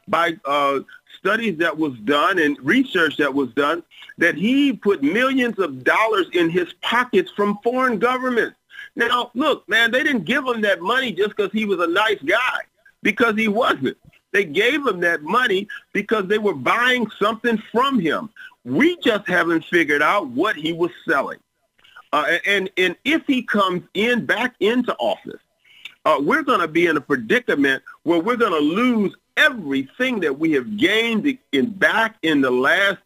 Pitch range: 175-255 Hz